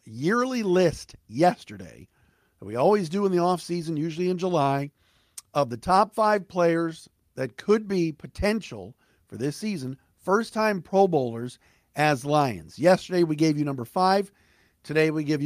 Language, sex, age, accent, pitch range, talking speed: English, male, 50-69, American, 125-180 Hz, 155 wpm